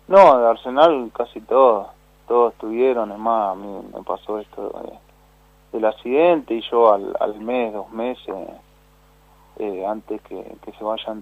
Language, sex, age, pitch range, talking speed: Spanish, male, 30-49, 105-120 Hz, 160 wpm